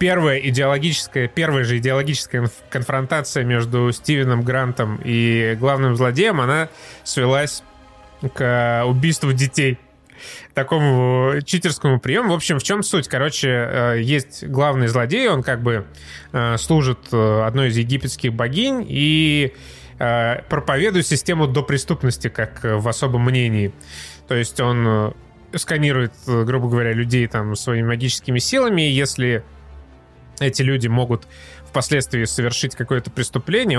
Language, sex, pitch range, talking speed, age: Russian, male, 115-140 Hz, 115 wpm, 20-39